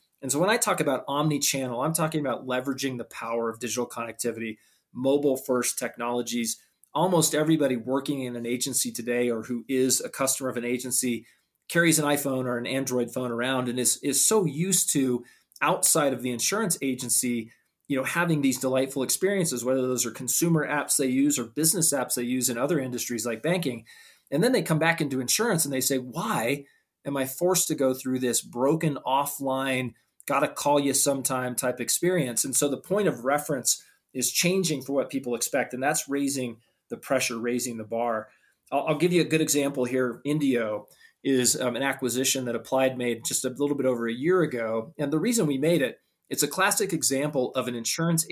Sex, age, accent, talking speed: male, 20-39, American, 195 wpm